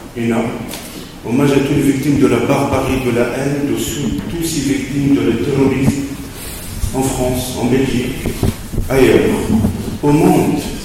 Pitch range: 110-135 Hz